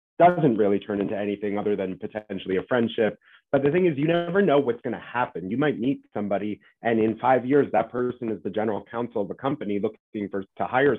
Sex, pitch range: male, 100-115 Hz